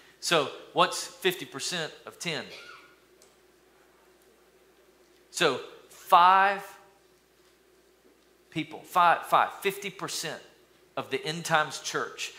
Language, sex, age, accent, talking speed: English, male, 40-59, American, 75 wpm